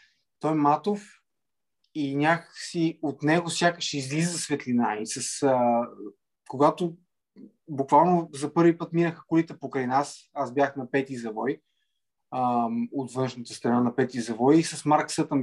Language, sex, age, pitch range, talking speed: Bulgarian, male, 20-39, 140-165 Hz, 150 wpm